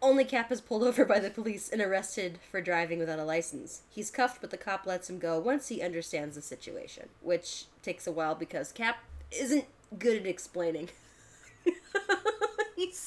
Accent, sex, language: American, female, English